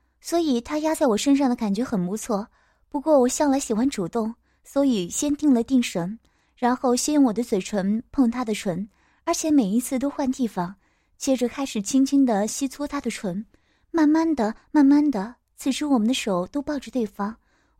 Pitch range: 215-280 Hz